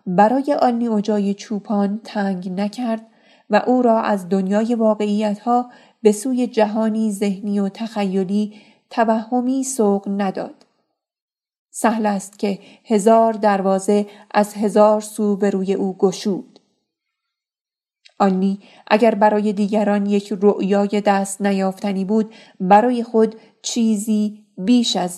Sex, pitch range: female, 195-220 Hz